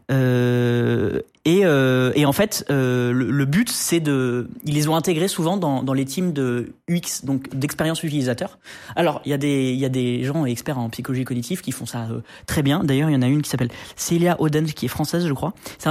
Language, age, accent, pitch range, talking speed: French, 20-39, French, 135-175 Hz, 235 wpm